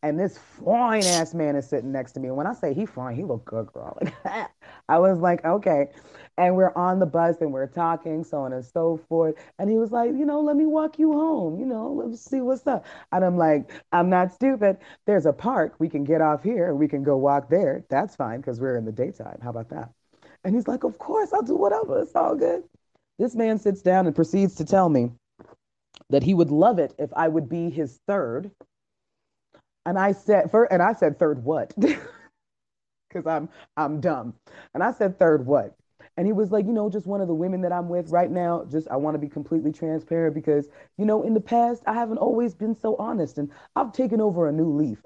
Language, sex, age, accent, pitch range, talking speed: English, female, 30-49, American, 150-210 Hz, 230 wpm